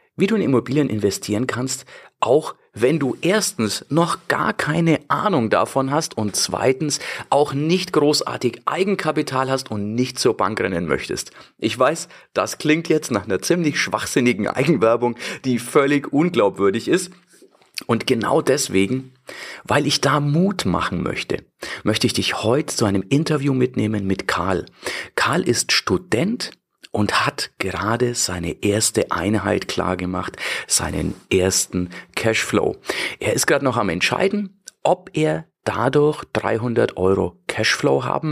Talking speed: 140 wpm